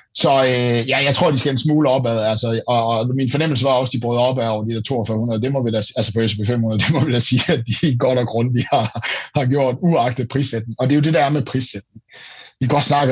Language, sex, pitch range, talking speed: Danish, male, 115-150 Hz, 280 wpm